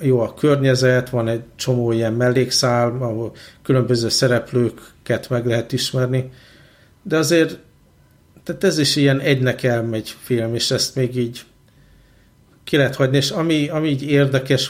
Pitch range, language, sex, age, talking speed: 120-140 Hz, Hungarian, male, 50-69, 145 wpm